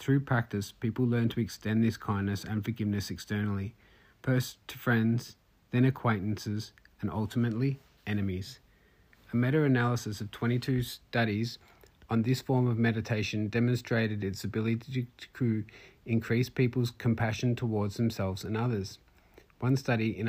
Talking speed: 125 wpm